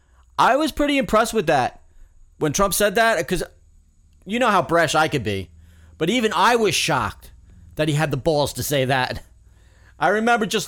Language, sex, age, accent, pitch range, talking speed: English, male, 30-49, American, 105-165 Hz, 190 wpm